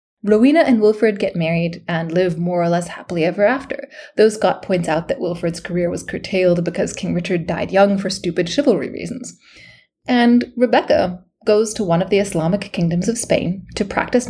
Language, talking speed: English, 185 wpm